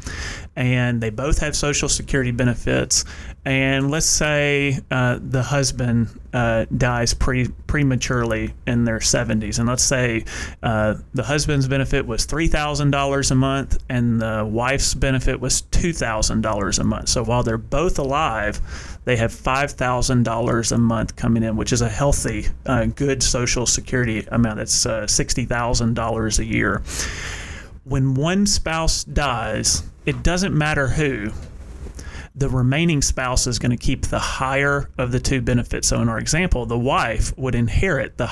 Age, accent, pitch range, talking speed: 30-49, American, 115-135 Hz, 145 wpm